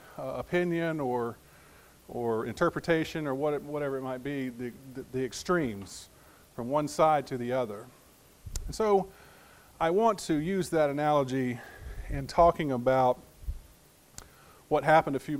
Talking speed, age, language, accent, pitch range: 135 wpm, 40-59, English, American, 130-160 Hz